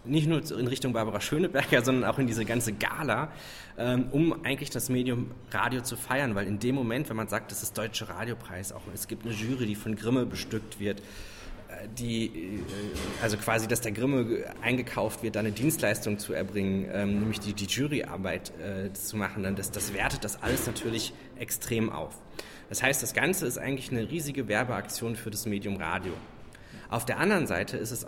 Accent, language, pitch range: German, German, 105-130 Hz